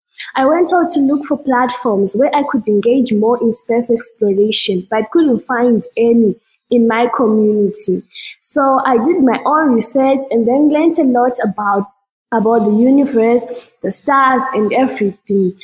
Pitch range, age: 225-285 Hz, 20-39